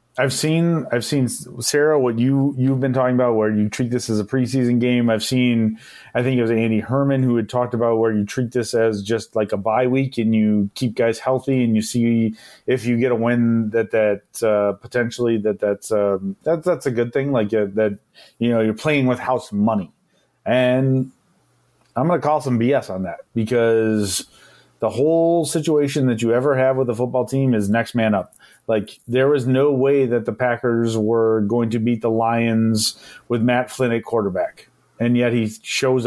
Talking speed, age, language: 205 wpm, 30-49, English